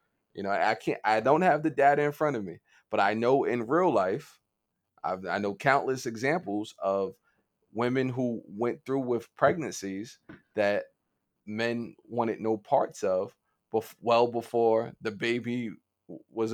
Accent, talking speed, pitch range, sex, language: American, 155 wpm, 100-115 Hz, male, English